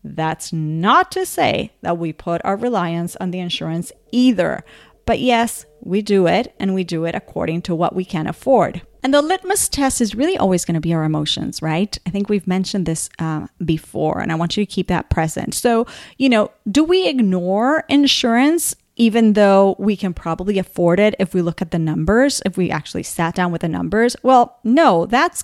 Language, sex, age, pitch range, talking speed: English, female, 30-49, 175-255 Hz, 205 wpm